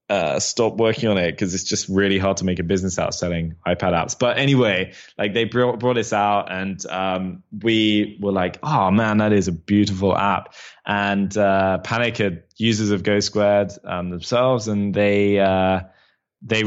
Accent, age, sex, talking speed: British, 10-29, male, 185 wpm